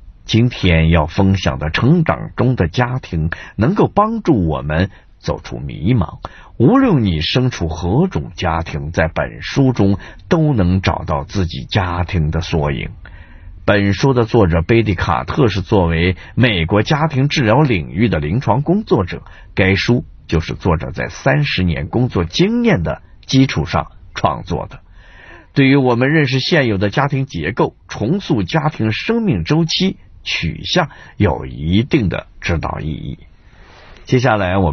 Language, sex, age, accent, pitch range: Chinese, male, 50-69, native, 85-125 Hz